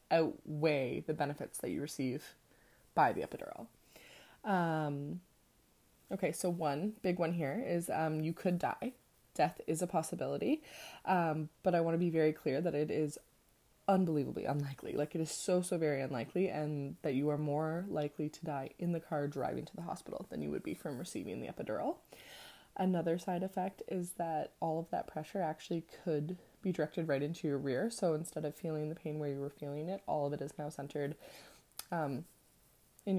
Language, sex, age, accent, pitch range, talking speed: English, female, 20-39, American, 150-175 Hz, 190 wpm